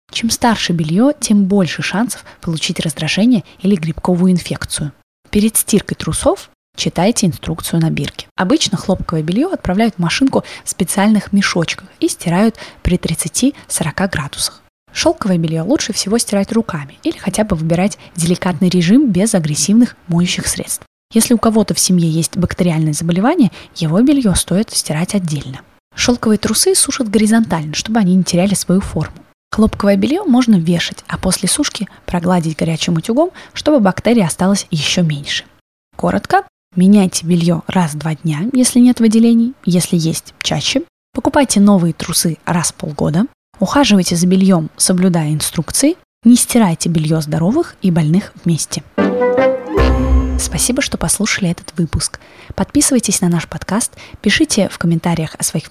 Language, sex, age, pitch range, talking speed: Russian, female, 20-39, 165-220 Hz, 140 wpm